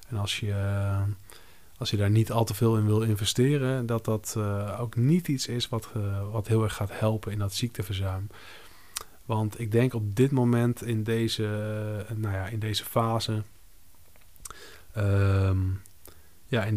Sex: male